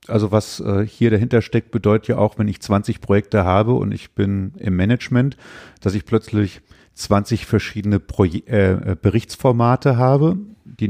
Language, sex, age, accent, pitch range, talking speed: German, male, 40-59, German, 100-120 Hz, 155 wpm